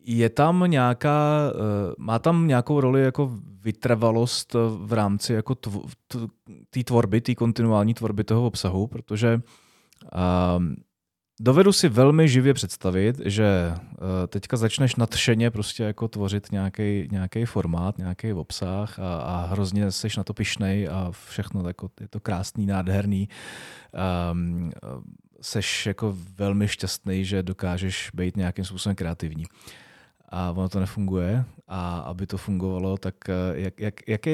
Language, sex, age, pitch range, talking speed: Czech, male, 30-49, 95-115 Hz, 140 wpm